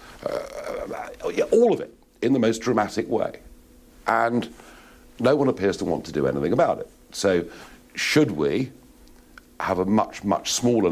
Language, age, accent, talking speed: English, 50-69, British, 155 wpm